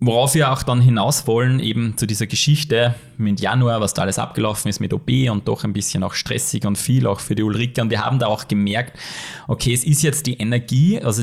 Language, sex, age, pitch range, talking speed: German, male, 20-39, 110-140 Hz, 235 wpm